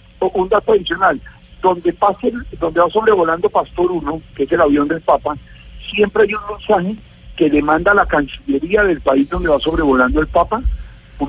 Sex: male